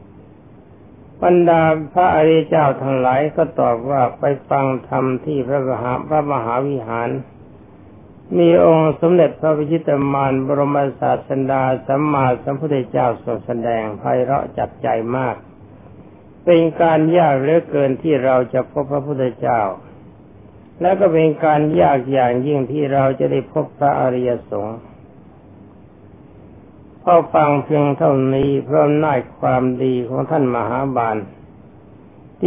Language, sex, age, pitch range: Thai, male, 60-79, 120-150 Hz